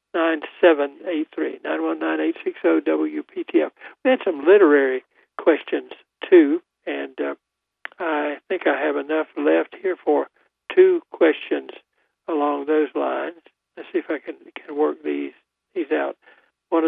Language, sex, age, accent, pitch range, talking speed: English, male, 60-79, American, 140-165 Hz, 165 wpm